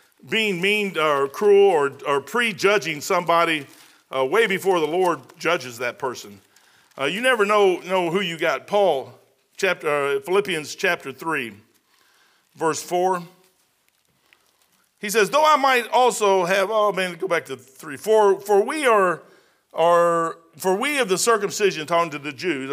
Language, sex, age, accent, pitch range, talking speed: English, male, 50-69, American, 155-210 Hz, 155 wpm